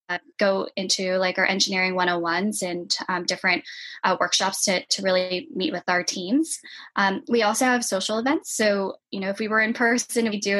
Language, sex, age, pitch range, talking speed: English, female, 10-29, 185-210 Hz, 200 wpm